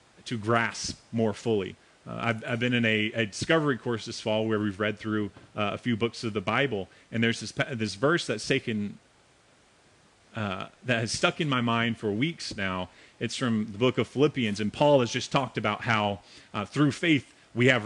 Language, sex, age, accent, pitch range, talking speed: English, male, 30-49, American, 105-130 Hz, 205 wpm